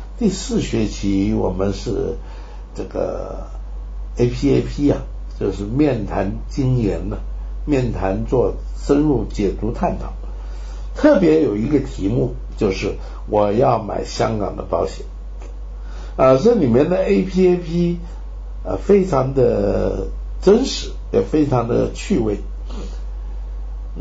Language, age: Chinese, 60-79